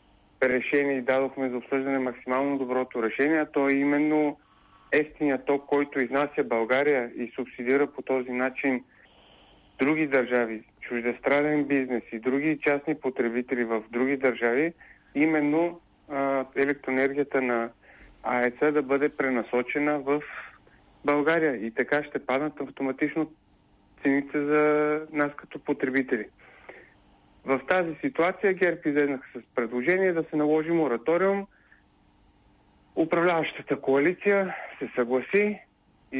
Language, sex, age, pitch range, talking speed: Bulgarian, male, 40-59, 130-150 Hz, 115 wpm